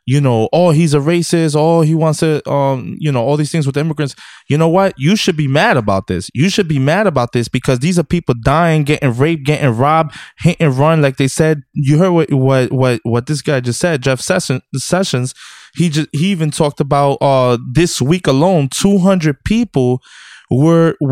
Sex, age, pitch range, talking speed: male, 20-39, 135-175 Hz, 215 wpm